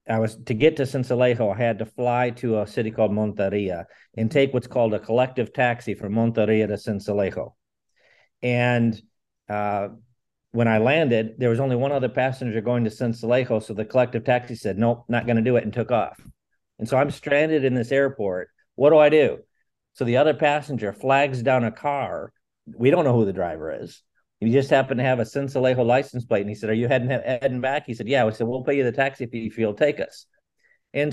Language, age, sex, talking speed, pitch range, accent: English, 50-69, male, 215 wpm, 110-135 Hz, American